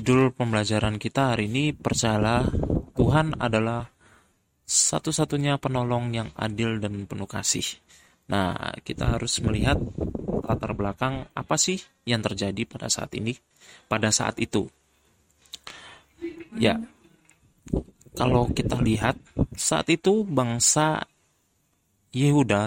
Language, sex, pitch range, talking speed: Indonesian, male, 110-145 Hz, 105 wpm